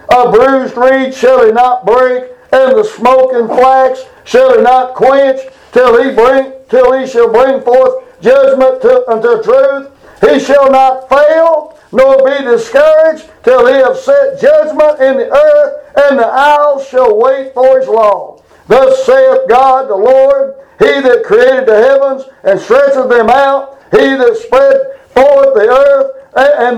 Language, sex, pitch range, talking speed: English, male, 260-315 Hz, 160 wpm